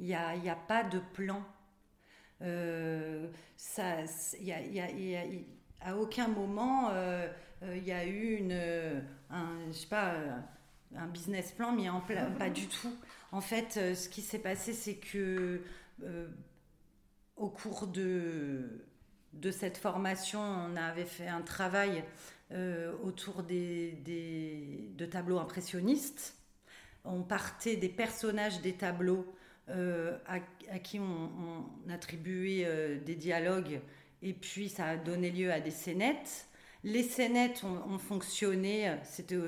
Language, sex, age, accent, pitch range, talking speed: French, female, 40-59, French, 170-200 Hz, 135 wpm